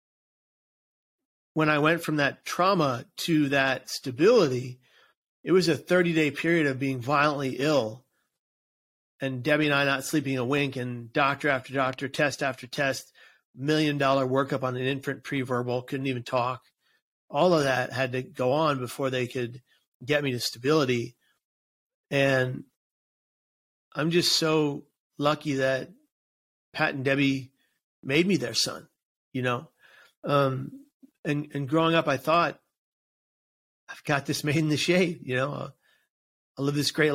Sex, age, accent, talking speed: male, 40-59, American, 150 wpm